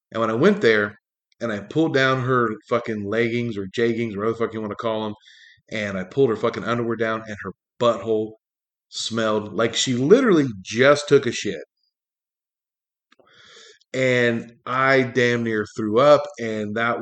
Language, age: English, 30-49